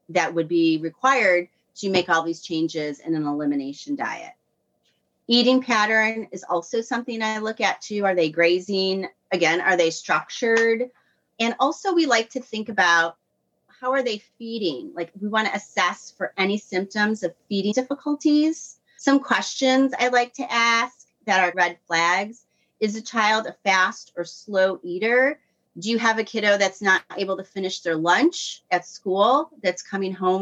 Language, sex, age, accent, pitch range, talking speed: English, female, 30-49, American, 170-225 Hz, 170 wpm